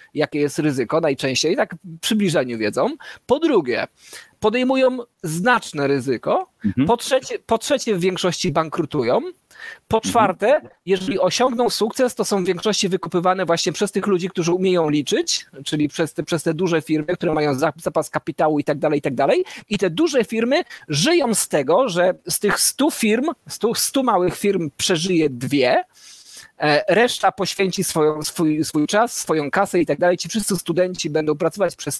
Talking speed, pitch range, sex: 160 wpm, 150-210 Hz, male